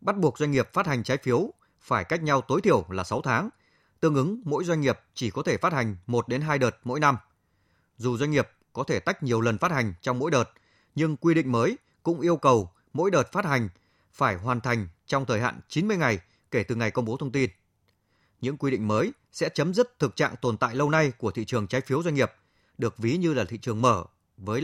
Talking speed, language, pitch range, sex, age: 235 wpm, Vietnamese, 110-155 Hz, male, 20-39